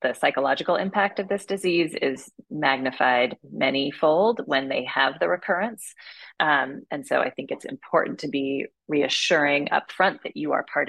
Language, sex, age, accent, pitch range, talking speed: English, female, 30-49, American, 130-160 Hz, 170 wpm